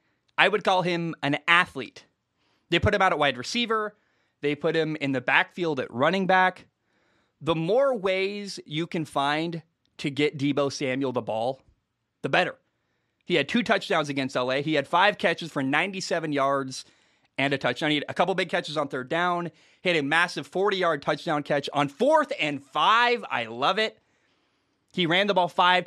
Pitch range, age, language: 140-185 Hz, 20-39, English